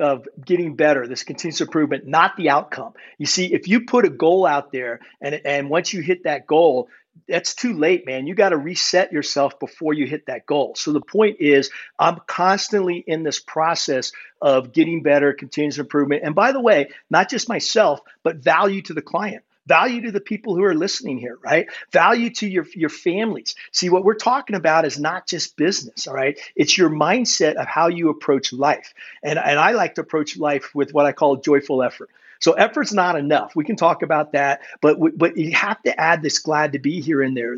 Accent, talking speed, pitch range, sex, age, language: American, 215 wpm, 145-185 Hz, male, 50-69, English